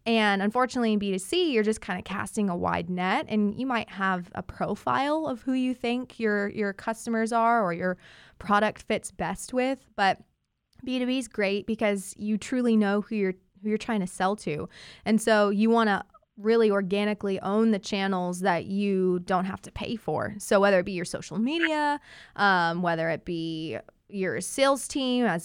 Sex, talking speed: female, 190 wpm